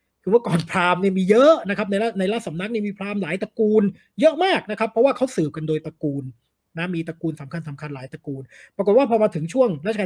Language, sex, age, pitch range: Thai, male, 30-49, 160-210 Hz